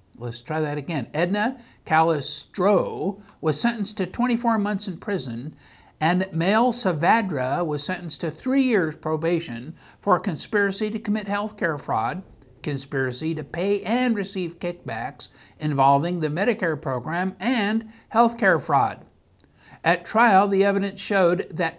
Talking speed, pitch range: 135 wpm, 150-205 Hz